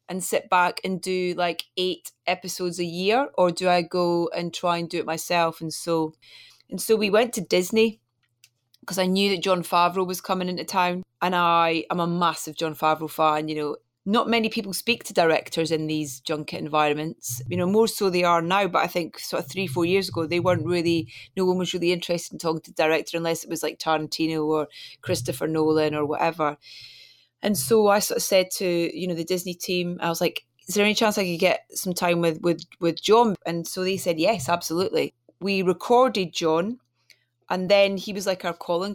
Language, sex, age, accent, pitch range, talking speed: English, female, 30-49, British, 165-190 Hz, 215 wpm